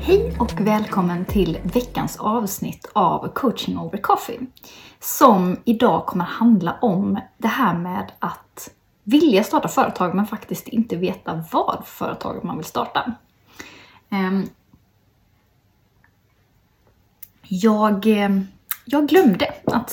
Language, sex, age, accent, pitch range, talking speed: Swedish, female, 20-39, native, 185-240 Hz, 105 wpm